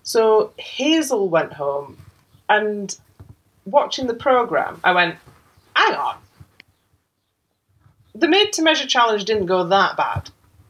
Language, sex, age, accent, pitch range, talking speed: English, female, 30-49, British, 145-220 Hz, 105 wpm